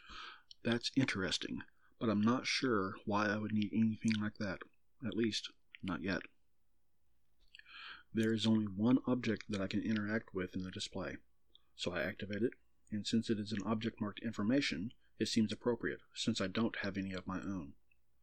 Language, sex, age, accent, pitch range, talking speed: English, male, 40-59, American, 95-115 Hz, 175 wpm